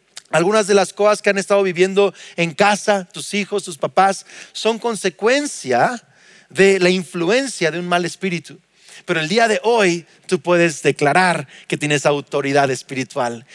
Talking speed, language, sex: 155 wpm, Spanish, male